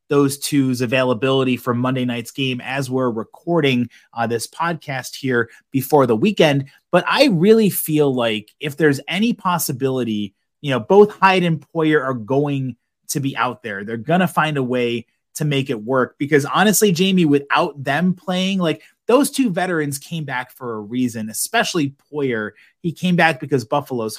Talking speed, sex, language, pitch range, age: 175 wpm, male, English, 130-170 Hz, 30-49